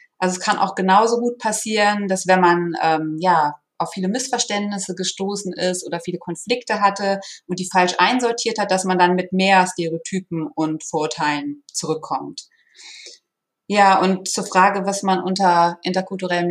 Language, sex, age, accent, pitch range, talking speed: German, female, 20-39, German, 180-220 Hz, 155 wpm